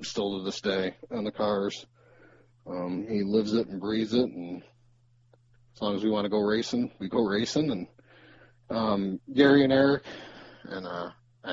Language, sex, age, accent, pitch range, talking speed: English, male, 30-49, American, 90-120 Hz, 170 wpm